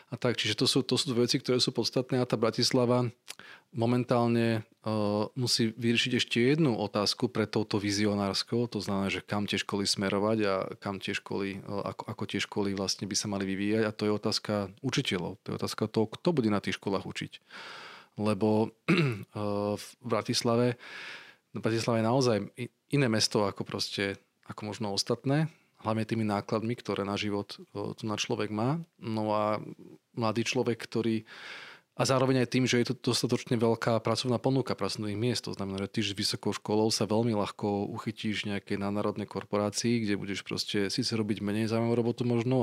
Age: 30-49